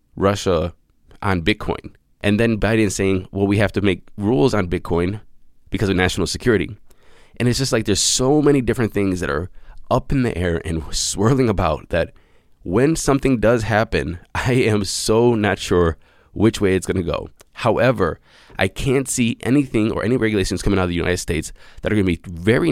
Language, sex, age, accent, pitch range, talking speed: English, male, 20-39, American, 90-115 Hz, 195 wpm